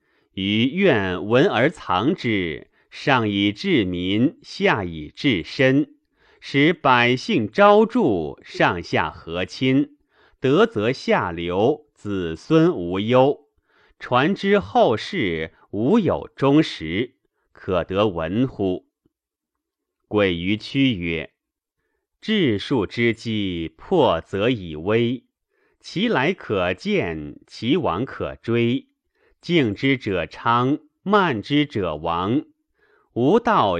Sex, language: male, Chinese